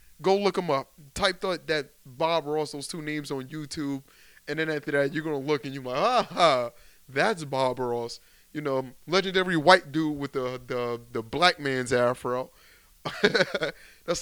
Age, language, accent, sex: 20-39, English, American, male